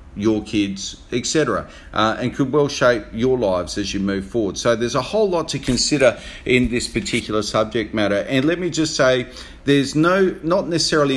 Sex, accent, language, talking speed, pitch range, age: male, Australian, English, 185 wpm, 100-120 Hz, 40-59